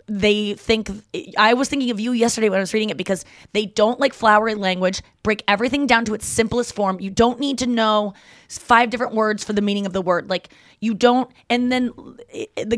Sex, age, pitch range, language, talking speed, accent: female, 20-39, 180-225 Hz, English, 215 wpm, American